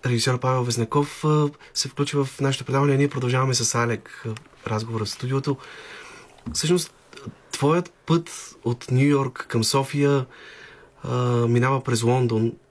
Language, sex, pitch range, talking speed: Bulgarian, male, 115-135 Hz, 125 wpm